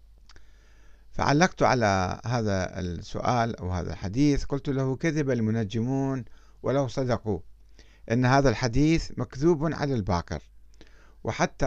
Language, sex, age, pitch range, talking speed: Arabic, male, 50-69, 110-160 Hz, 105 wpm